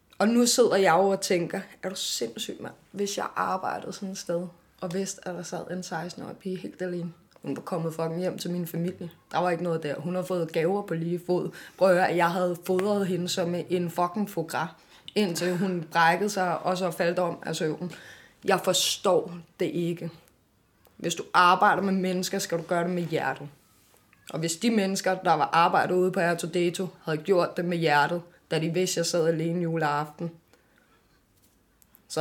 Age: 20-39